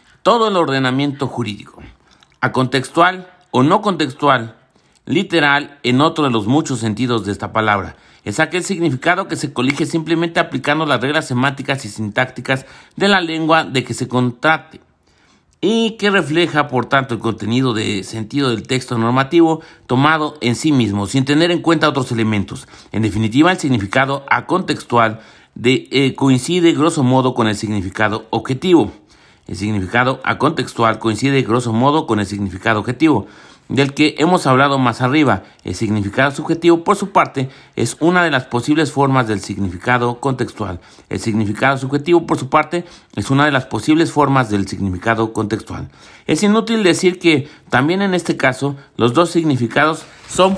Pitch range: 115-160 Hz